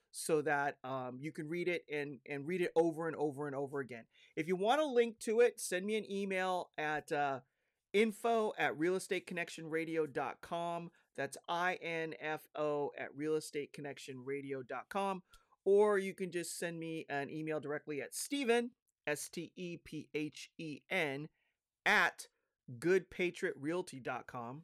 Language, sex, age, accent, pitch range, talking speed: English, male, 30-49, American, 145-180 Hz, 125 wpm